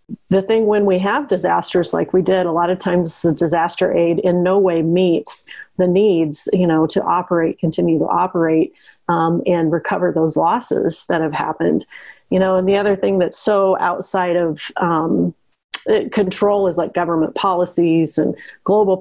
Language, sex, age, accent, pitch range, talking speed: English, female, 30-49, American, 165-185 Hz, 175 wpm